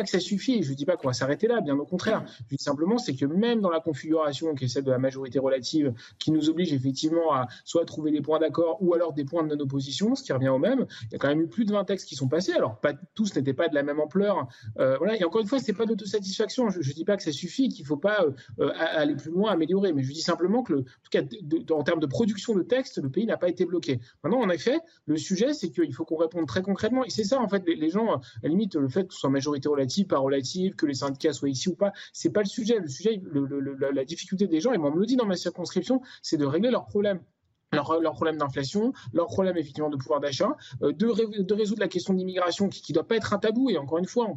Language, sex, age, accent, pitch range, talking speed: French, male, 30-49, French, 145-205 Hz, 295 wpm